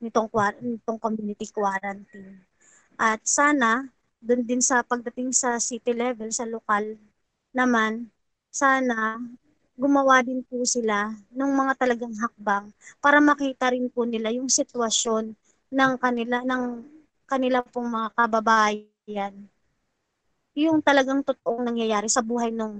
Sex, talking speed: male, 120 wpm